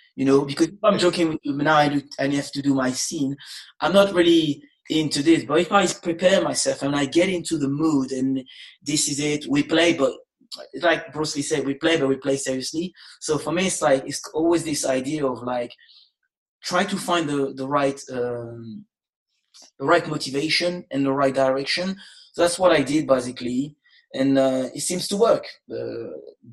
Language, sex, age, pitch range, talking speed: English, male, 20-39, 135-170 Hz, 200 wpm